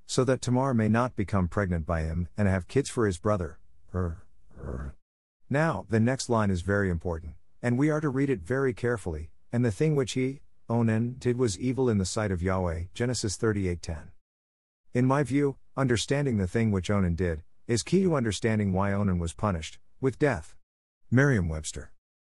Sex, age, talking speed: male, 50-69, 180 wpm